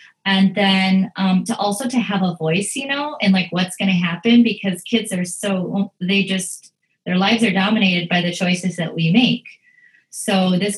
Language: English